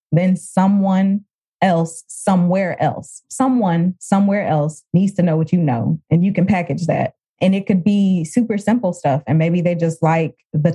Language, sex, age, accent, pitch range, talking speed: English, female, 20-39, American, 155-195 Hz, 180 wpm